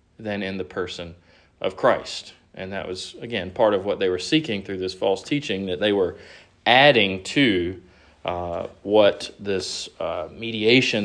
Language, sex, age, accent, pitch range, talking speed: English, male, 40-59, American, 95-140 Hz, 165 wpm